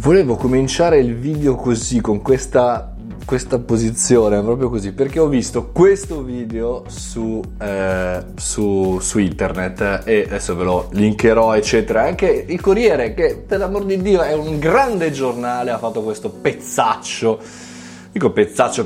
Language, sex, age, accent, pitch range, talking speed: Italian, male, 20-39, native, 110-160 Hz, 145 wpm